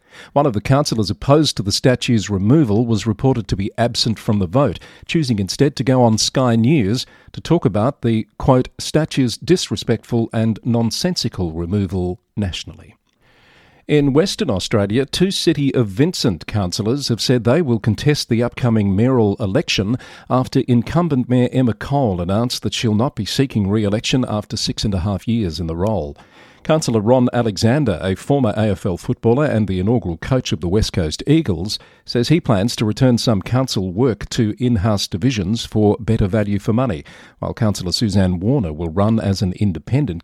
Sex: male